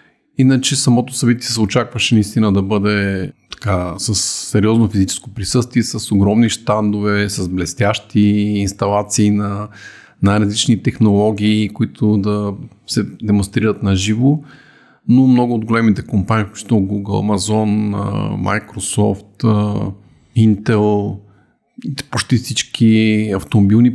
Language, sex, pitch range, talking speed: Bulgarian, male, 100-120 Hz, 105 wpm